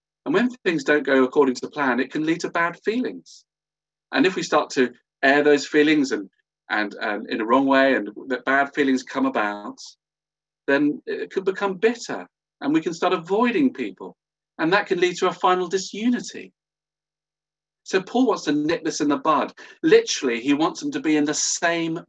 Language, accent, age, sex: English, British, 40-59, male